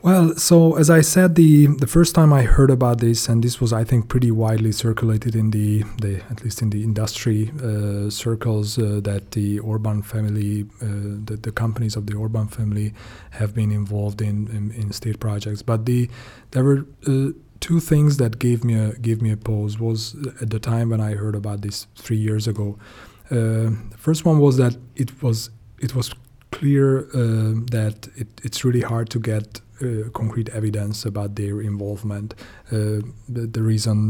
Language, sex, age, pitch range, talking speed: English, male, 30-49, 105-125 Hz, 190 wpm